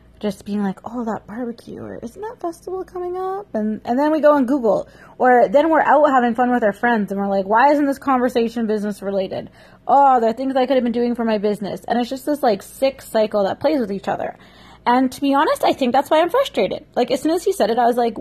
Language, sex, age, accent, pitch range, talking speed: English, female, 20-39, American, 200-260 Hz, 265 wpm